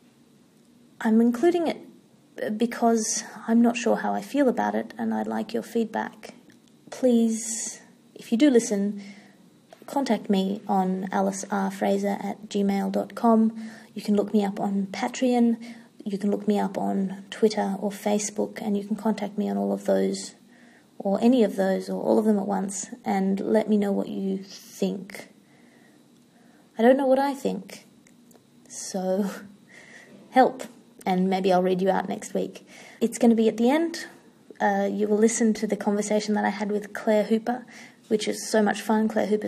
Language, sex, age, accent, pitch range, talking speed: English, female, 30-49, Australian, 195-230 Hz, 170 wpm